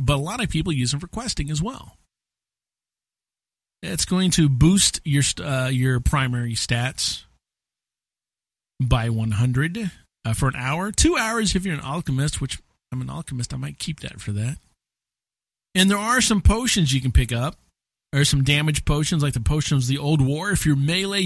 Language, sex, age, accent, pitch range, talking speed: English, male, 40-59, American, 120-155 Hz, 185 wpm